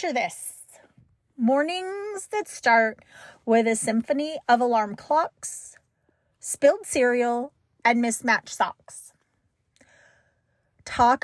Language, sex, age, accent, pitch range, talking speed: English, female, 30-49, American, 225-300 Hz, 85 wpm